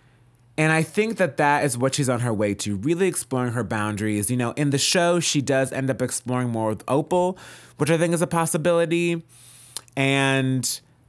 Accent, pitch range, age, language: American, 115-145 Hz, 30-49, English